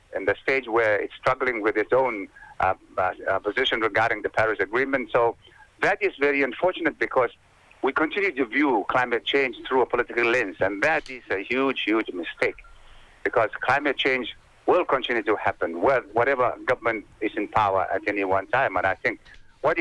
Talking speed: 180 wpm